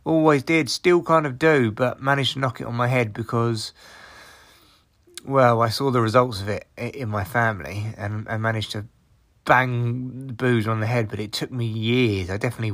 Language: English